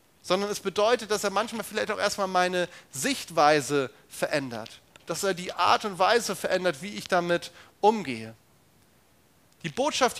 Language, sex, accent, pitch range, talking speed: German, male, German, 155-205 Hz, 145 wpm